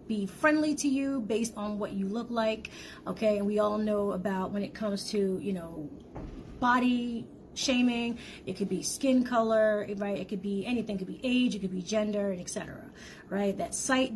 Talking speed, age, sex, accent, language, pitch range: 200 wpm, 30-49, female, American, English, 195-235 Hz